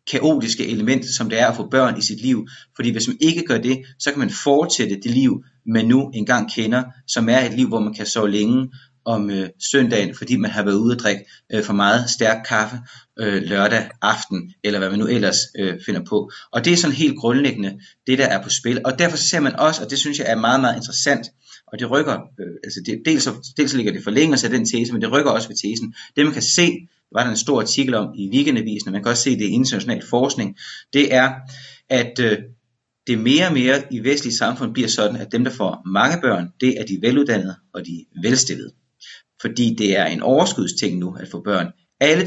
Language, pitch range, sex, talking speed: Danish, 110-140 Hz, male, 235 wpm